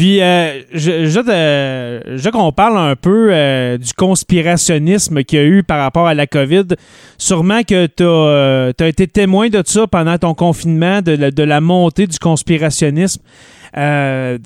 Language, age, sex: French, 30-49, male